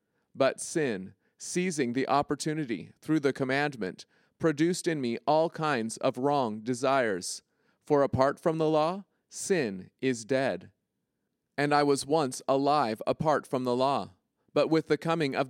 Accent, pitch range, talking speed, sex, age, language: American, 130-155 Hz, 145 wpm, male, 40-59, English